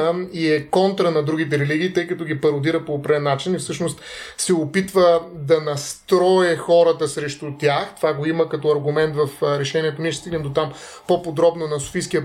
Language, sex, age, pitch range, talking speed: Bulgarian, male, 30-49, 150-190 Hz, 180 wpm